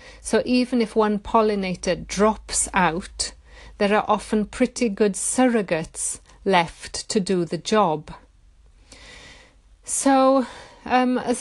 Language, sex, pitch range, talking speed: English, female, 180-220 Hz, 110 wpm